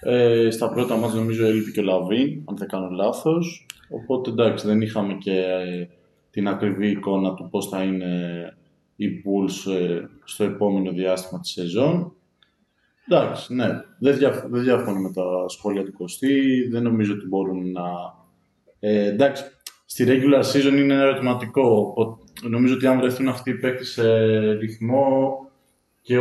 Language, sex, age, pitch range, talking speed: Greek, male, 20-39, 105-135 Hz, 155 wpm